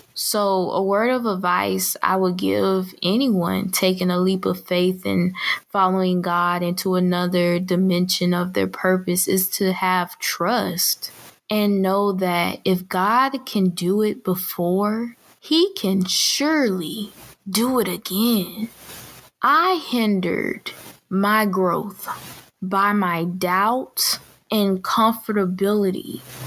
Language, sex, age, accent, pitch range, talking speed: English, female, 20-39, American, 180-205 Hz, 115 wpm